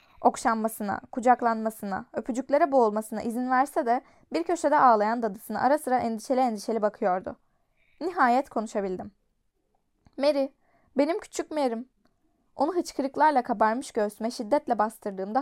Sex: female